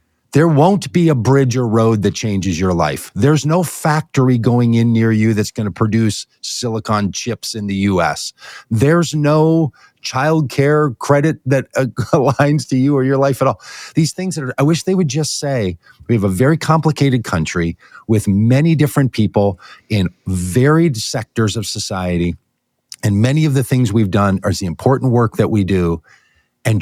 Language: English